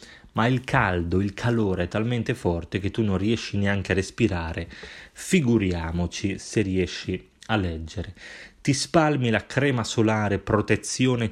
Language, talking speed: Italian, 140 wpm